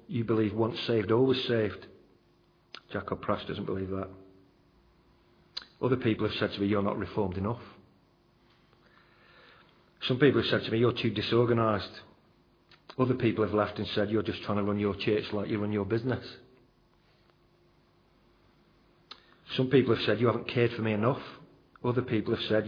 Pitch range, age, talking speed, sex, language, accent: 105-125 Hz, 40-59, 165 wpm, male, English, British